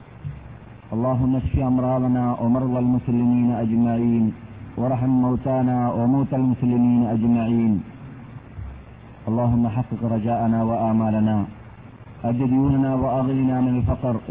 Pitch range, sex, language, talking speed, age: 115-130 Hz, male, Malayalam, 85 wpm, 40-59